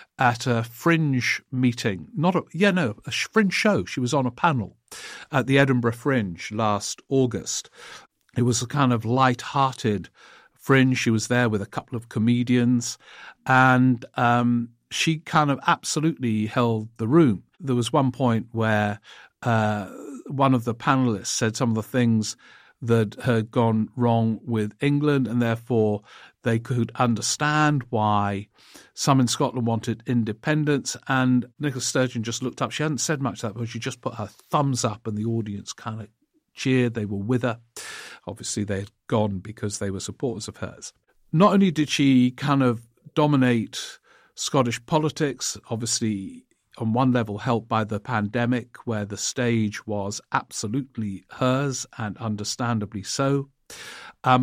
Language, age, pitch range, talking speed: English, 50-69, 110-135 Hz, 160 wpm